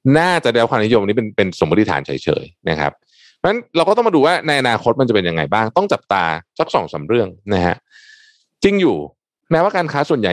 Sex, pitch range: male, 90-150 Hz